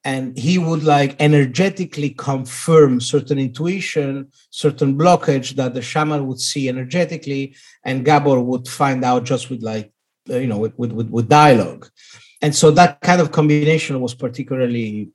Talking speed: 150 wpm